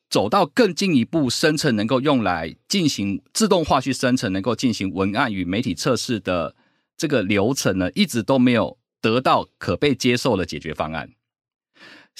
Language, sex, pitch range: Chinese, male, 95-155 Hz